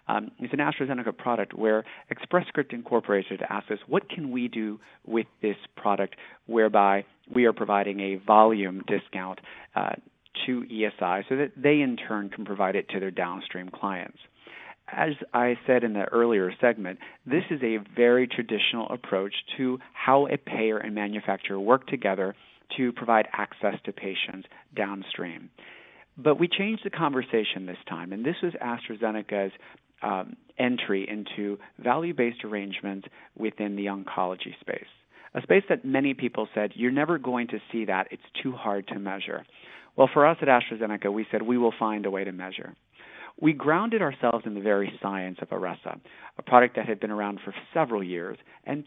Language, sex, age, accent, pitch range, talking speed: English, male, 40-59, American, 100-130 Hz, 165 wpm